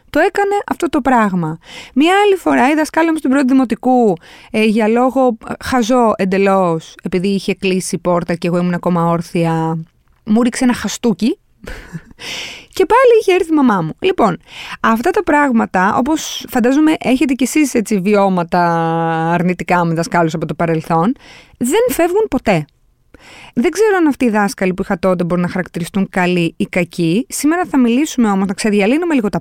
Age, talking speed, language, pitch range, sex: 20-39, 165 wpm, Greek, 180-270 Hz, female